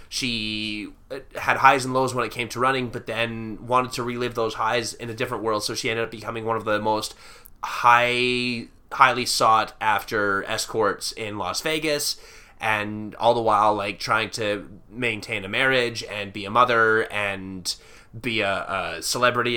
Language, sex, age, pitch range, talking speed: English, male, 20-39, 105-125 Hz, 175 wpm